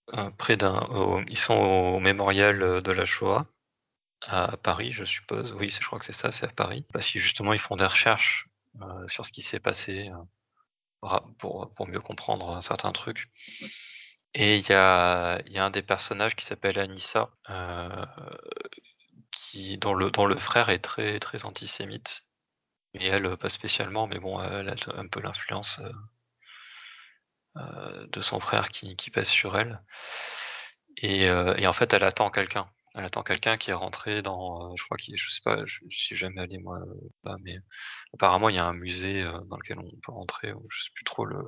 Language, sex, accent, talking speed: French, male, French, 195 wpm